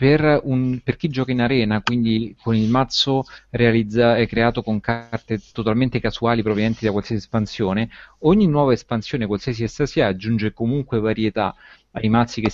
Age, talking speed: 30-49, 160 wpm